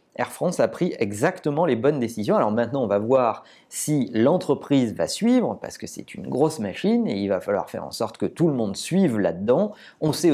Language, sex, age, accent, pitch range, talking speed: French, male, 40-59, French, 115-155 Hz, 220 wpm